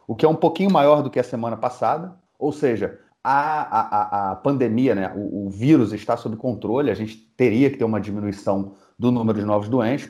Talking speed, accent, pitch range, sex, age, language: 215 wpm, Brazilian, 105-140 Hz, male, 30-49, Portuguese